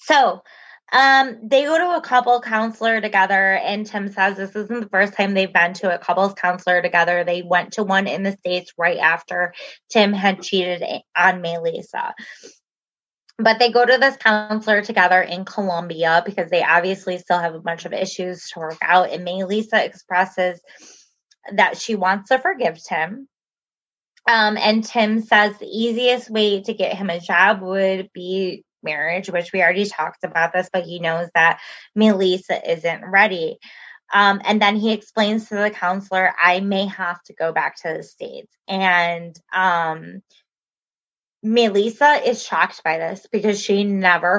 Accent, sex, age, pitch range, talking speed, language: American, female, 20-39, 180-220 Hz, 170 wpm, English